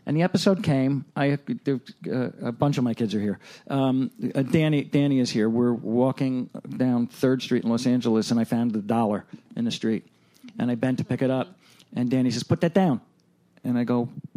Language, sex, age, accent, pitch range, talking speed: English, male, 50-69, American, 130-185 Hz, 210 wpm